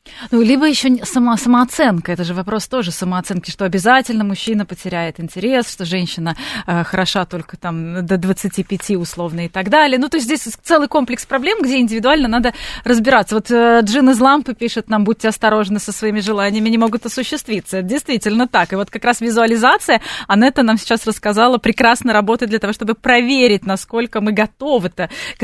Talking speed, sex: 170 wpm, female